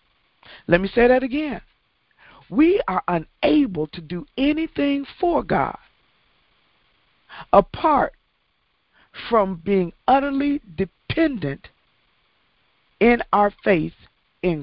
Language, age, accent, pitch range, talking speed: English, 50-69, American, 145-205 Hz, 90 wpm